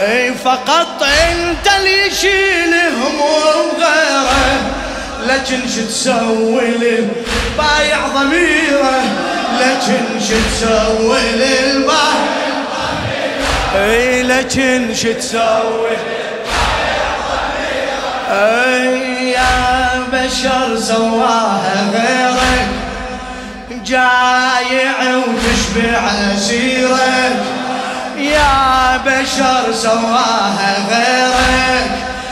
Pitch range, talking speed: 230-265 Hz, 55 wpm